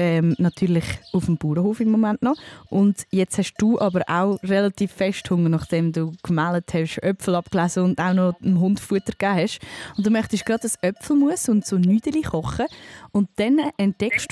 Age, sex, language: 20-39, female, German